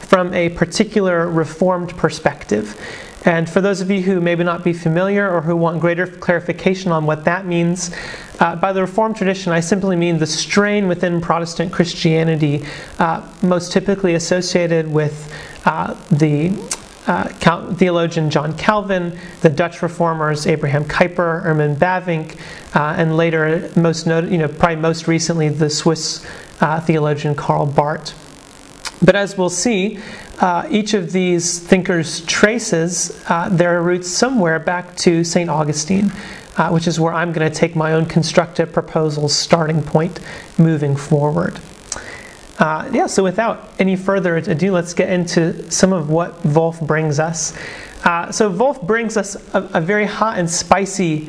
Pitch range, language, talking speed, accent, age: 160-190 Hz, English, 155 wpm, American, 30-49